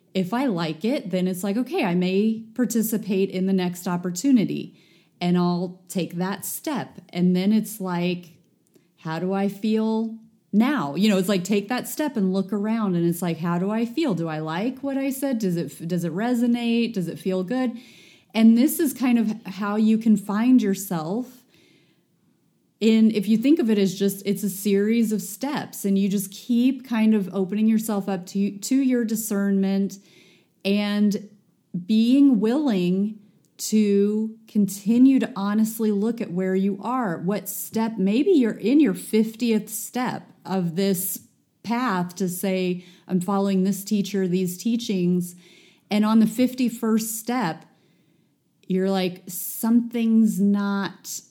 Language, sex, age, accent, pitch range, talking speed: English, female, 30-49, American, 185-225 Hz, 160 wpm